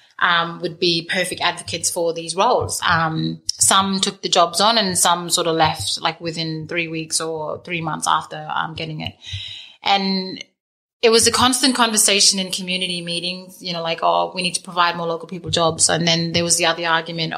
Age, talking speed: 30-49, 200 wpm